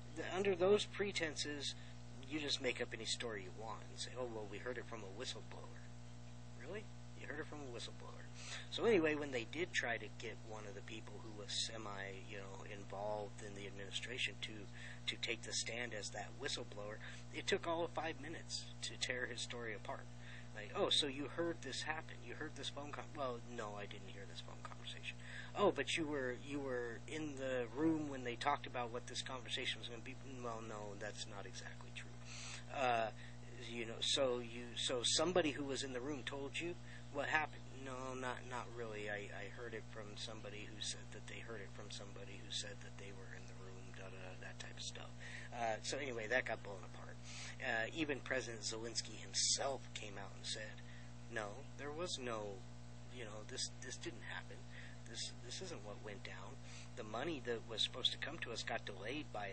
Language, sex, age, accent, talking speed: English, male, 40-59, American, 205 wpm